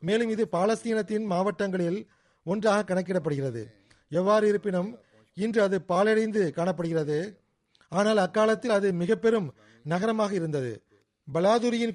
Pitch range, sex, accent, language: 165-215 Hz, male, native, Tamil